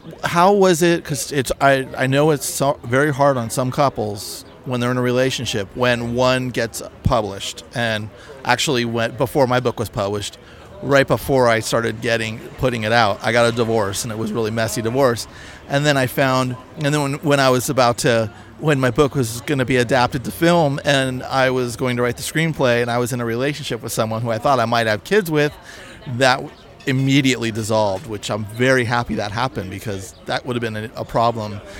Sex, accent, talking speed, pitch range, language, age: male, American, 205 wpm, 115-145 Hz, English, 40-59